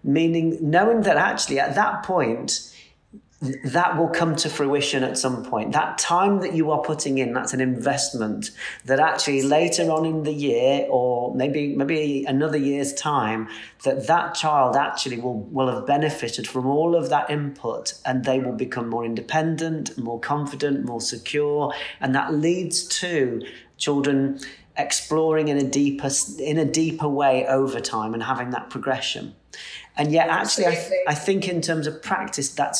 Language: English